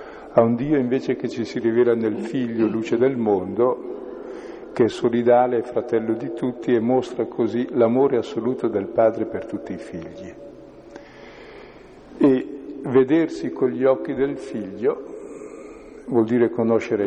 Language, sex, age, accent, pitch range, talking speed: Italian, male, 50-69, native, 110-135 Hz, 145 wpm